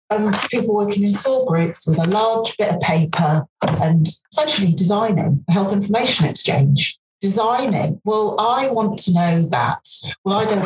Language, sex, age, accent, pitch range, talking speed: English, female, 40-59, British, 155-200 Hz, 165 wpm